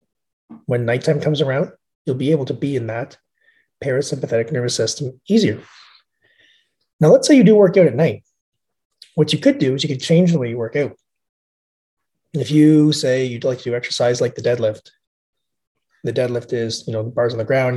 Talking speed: 195 wpm